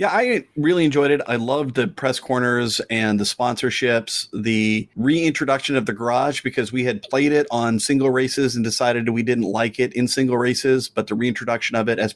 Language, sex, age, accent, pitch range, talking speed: English, male, 40-59, American, 120-145 Hz, 200 wpm